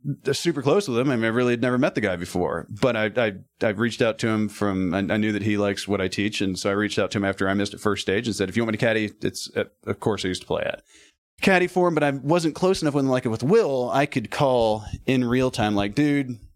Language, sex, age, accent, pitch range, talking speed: English, male, 30-49, American, 105-140 Hz, 290 wpm